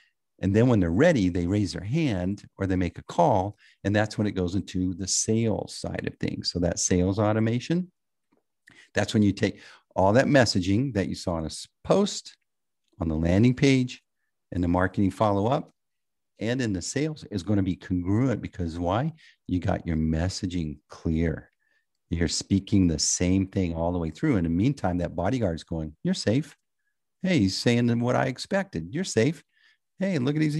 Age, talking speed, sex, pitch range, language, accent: 50-69, 190 wpm, male, 95-135 Hz, English, American